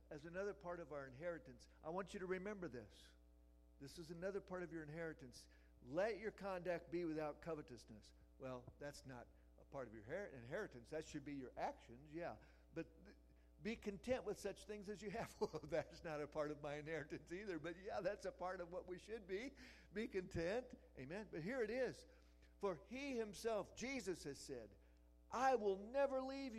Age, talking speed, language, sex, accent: 50-69, 190 wpm, English, male, American